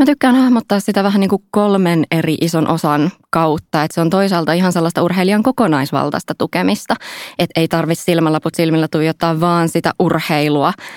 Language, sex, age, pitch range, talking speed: Finnish, female, 20-39, 155-200 Hz, 170 wpm